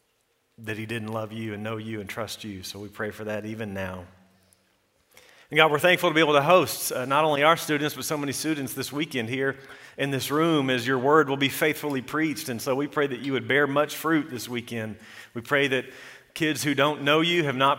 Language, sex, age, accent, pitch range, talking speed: English, male, 40-59, American, 120-150 Hz, 240 wpm